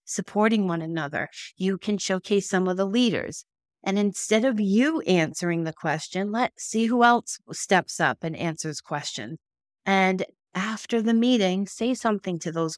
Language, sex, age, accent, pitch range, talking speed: English, female, 40-59, American, 165-215 Hz, 160 wpm